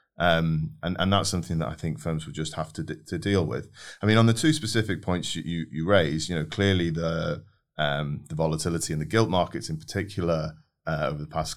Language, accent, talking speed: English, British, 235 wpm